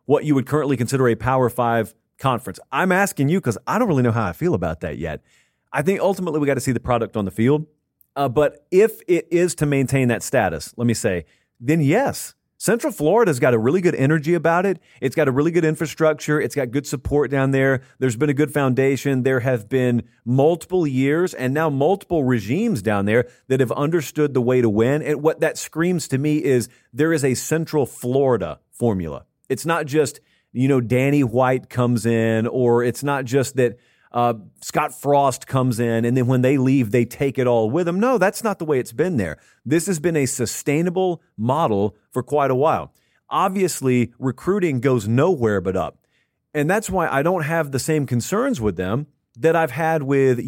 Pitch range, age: 120-155 Hz, 30-49